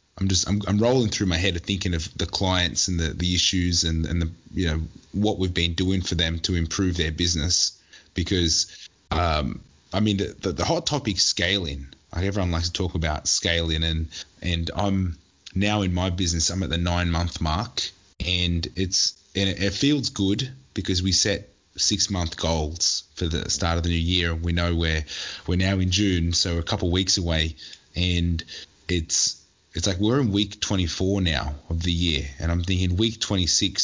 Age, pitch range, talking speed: 20-39, 85-100 Hz, 200 wpm